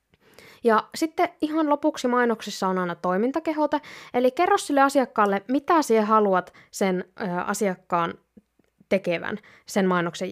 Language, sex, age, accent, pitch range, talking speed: Finnish, female, 20-39, native, 185-250 Hz, 120 wpm